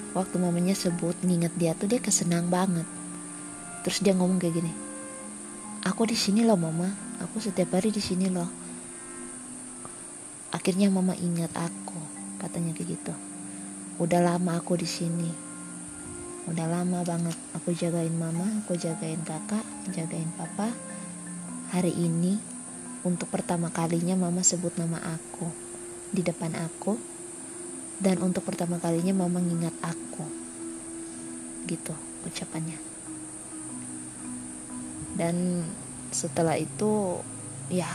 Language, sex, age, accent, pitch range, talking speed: Indonesian, female, 20-39, native, 155-180 Hz, 115 wpm